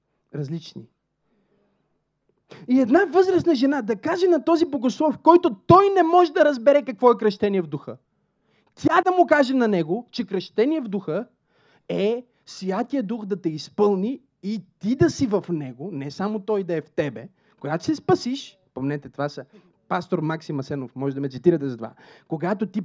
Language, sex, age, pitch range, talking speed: Bulgarian, male, 20-39, 150-225 Hz, 175 wpm